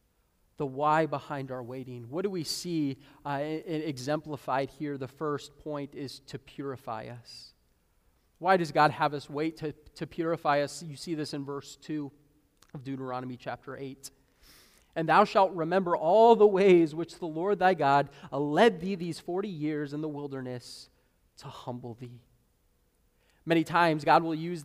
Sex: male